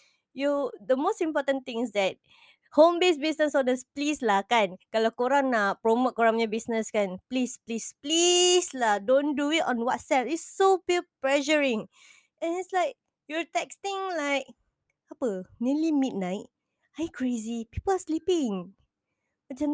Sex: female